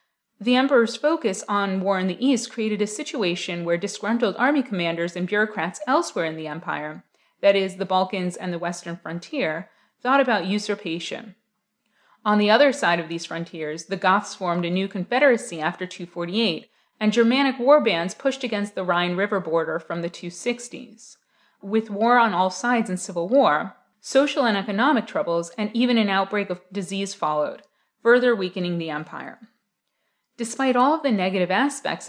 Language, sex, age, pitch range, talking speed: English, female, 30-49, 180-235 Hz, 165 wpm